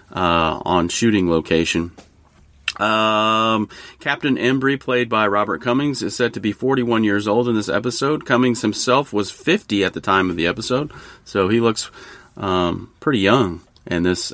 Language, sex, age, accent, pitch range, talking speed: English, male, 30-49, American, 100-125 Hz, 165 wpm